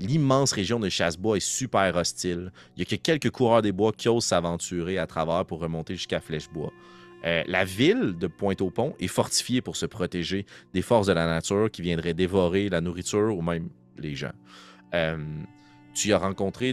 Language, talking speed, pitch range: French, 195 wpm, 75-100 Hz